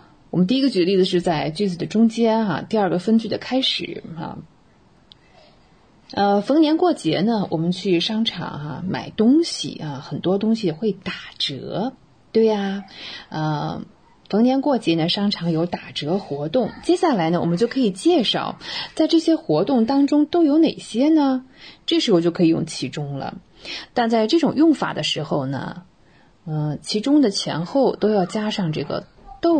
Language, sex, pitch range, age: English, female, 170-260 Hz, 20-39